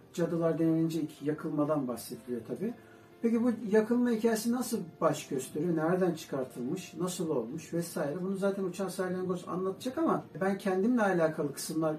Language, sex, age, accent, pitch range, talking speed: Turkish, male, 60-79, native, 165-225 Hz, 135 wpm